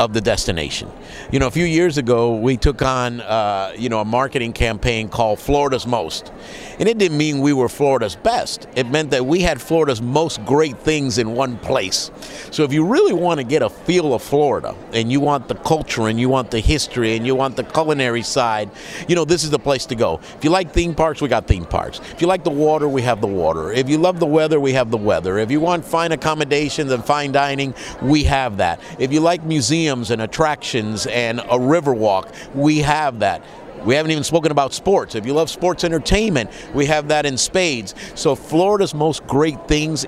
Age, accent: 50-69, American